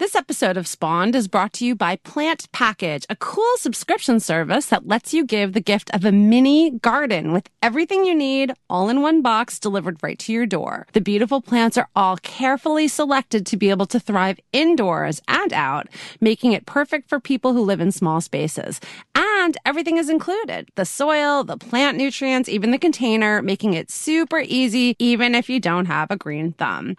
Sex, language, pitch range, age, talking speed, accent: female, English, 200-275 Hz, 30-49, 195 wpm, American